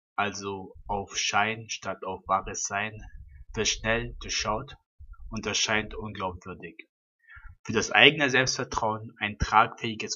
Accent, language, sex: German, German, male